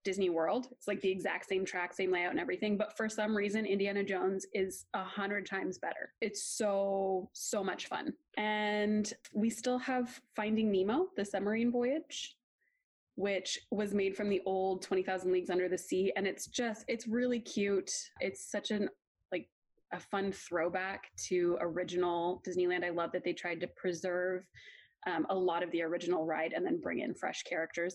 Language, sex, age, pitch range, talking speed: English, female, 20-39, 185-220 Hz, 180 wpm